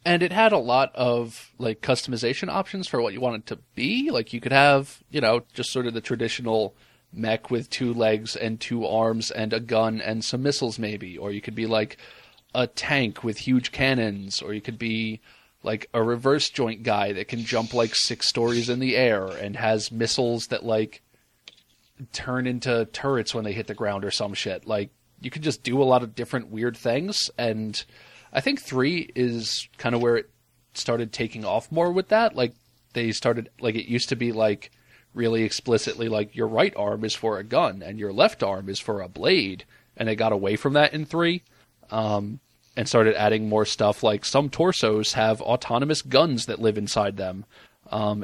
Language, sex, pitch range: English, male, 110-130 Hz